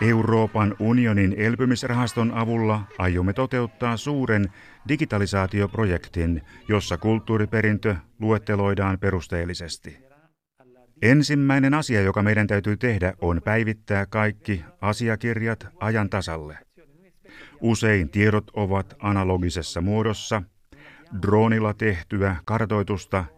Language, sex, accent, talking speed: Finnish, male, native, 80 wpm